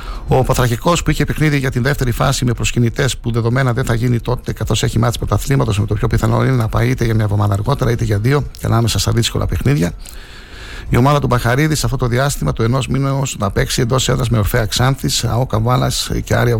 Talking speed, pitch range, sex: 230 wpm, 105-125 Hz, male